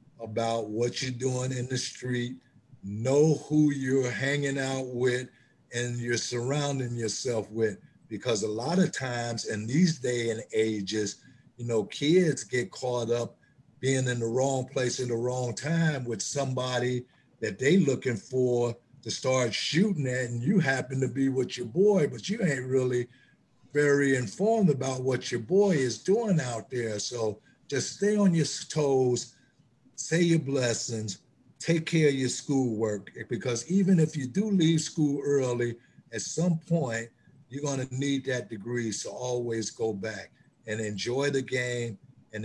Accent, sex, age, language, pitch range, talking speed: American, male, 60-79, English, 115-135 Hz, 160 wpm